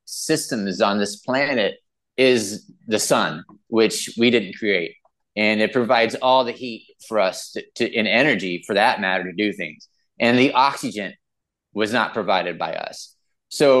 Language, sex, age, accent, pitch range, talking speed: English, male, 30-49, American, 105-140 Hz, 160 wpm